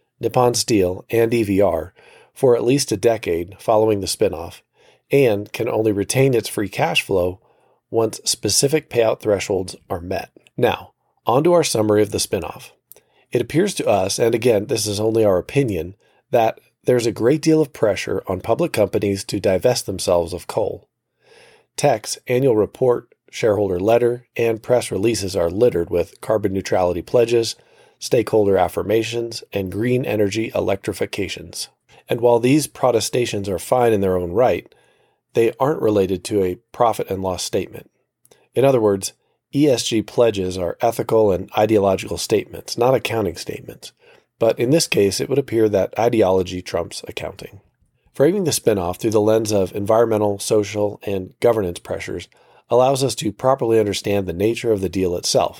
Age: 40-59